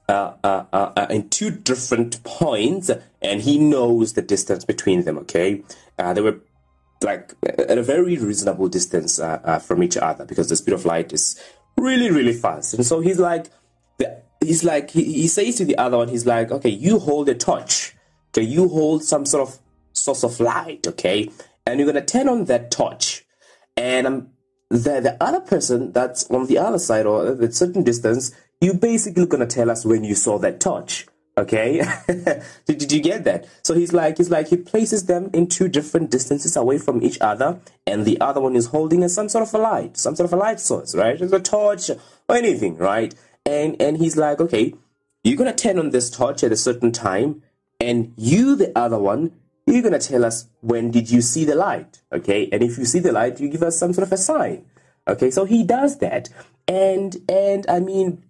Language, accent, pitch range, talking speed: English, South African, 120-180 Hz, 210 wpm